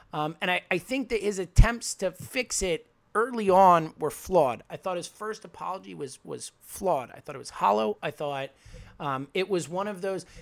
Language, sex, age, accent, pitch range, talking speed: English, male, 30-49, American, 150-200 Hz, 205 wpm